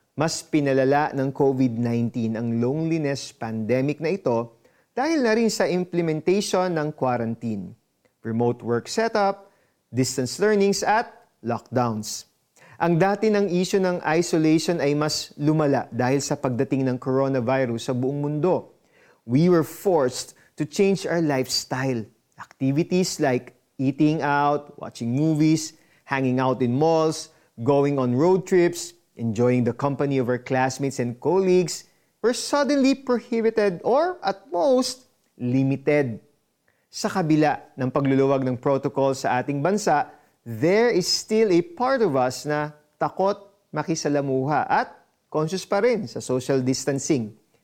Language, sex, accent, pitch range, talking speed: Filipino, male, native, 130-180 Hz, 130 wpm